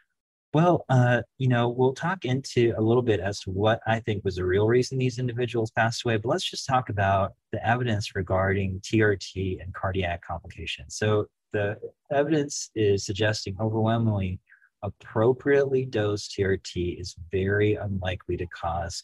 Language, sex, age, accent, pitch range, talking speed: English, male, 30-49, American, 95-115 Hz, 155 wpm